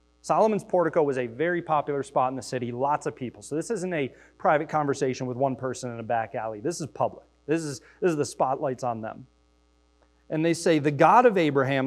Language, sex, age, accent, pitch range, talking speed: English, male, 30-49, American, 135-205 Hz, 220 wpm